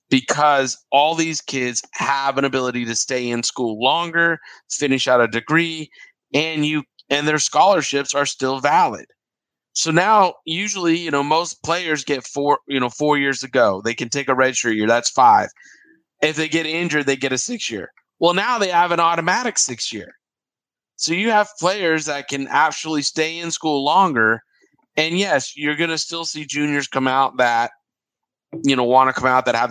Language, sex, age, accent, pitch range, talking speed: English, male, 30-49, American, 130-160 Hz, 185 wpm